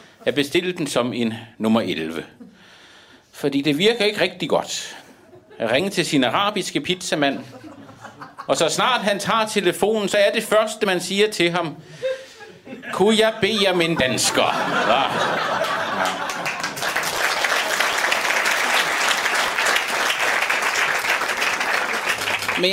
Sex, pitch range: male, 155-225 Hz